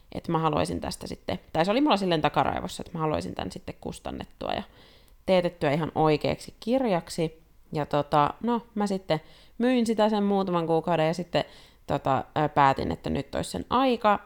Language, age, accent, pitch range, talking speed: Finnish, 30-49, native, 150-200 Hz, 175 wpm